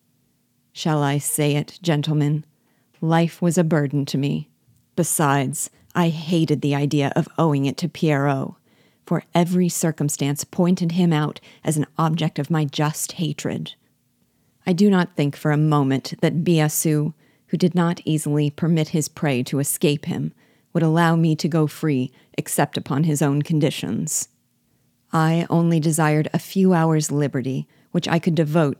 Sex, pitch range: female, 145-170 Hz